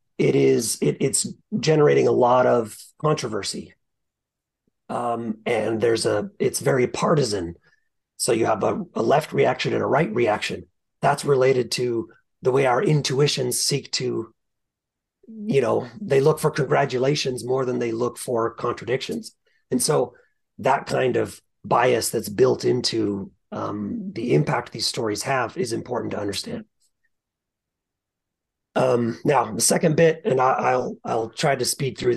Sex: male